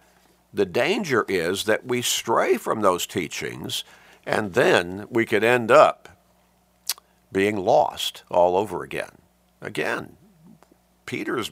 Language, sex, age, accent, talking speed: English, male, 50-69, American, 115 wpm